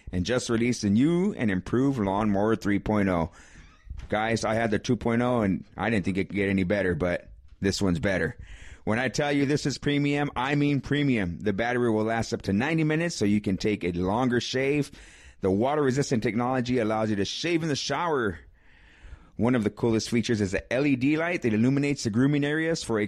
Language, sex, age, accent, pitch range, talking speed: English, male, 30-49, American, 100-140 Hz, 200 wpm